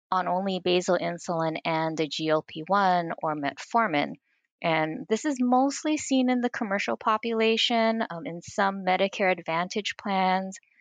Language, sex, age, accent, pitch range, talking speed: English, female, 20-39, American, 165-215 Hz, 135 wpm